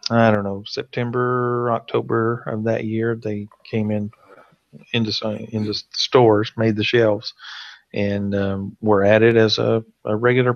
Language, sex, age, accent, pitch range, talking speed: English, male, 40-59, American, 100-115 Hz, 140 wpm